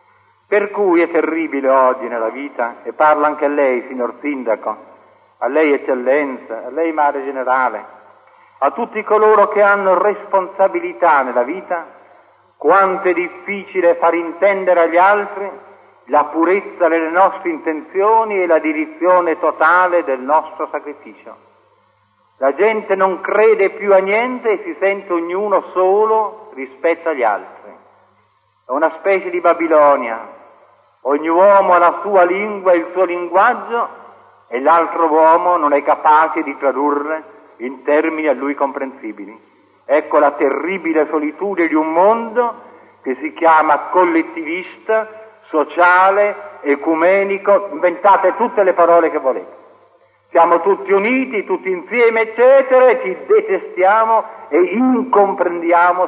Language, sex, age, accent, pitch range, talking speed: Italian, male, 50-69, native, 155-210 Hz, 130 wpm